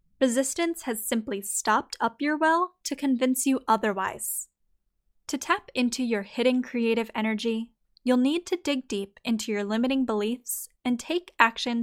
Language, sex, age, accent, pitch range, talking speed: English, female, 10-29, American, 220-275 Hz, 150 wpm